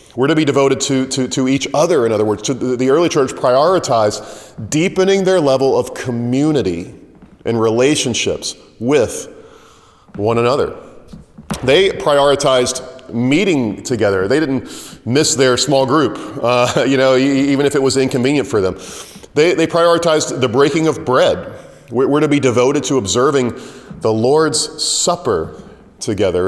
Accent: American